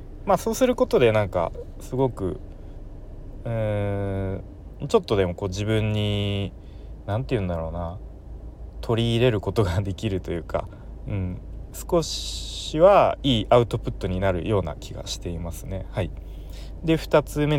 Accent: native